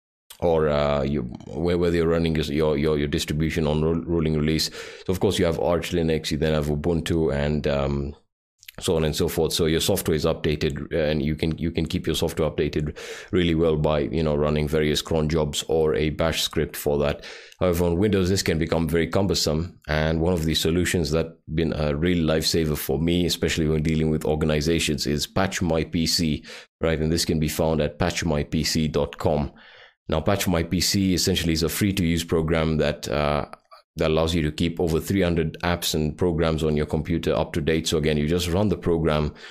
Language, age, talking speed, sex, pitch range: English, 30-49, 205 wpm, male, 75-85 Hz